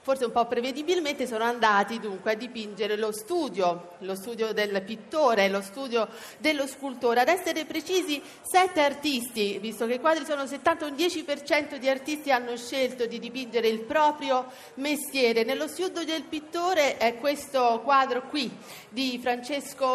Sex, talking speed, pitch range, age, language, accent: female, 155 wpm, 210-275 Hz, 40-59, Italian, native